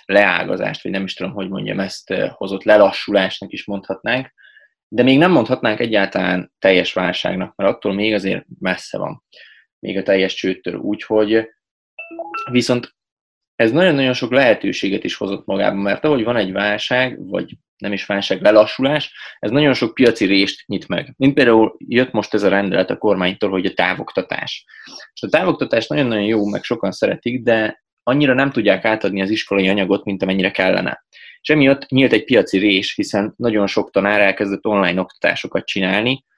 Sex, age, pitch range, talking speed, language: male, 20-39, 95-120 Hz, 165 wpm, Hungarian